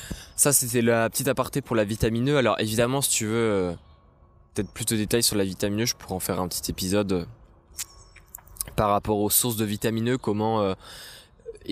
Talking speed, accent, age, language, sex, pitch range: 205 wpm, French, 20-39, French, male, 100-120 Hz